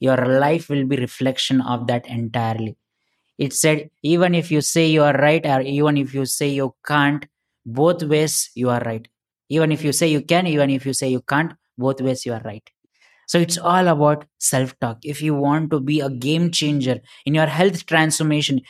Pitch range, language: 130-170 Hz, English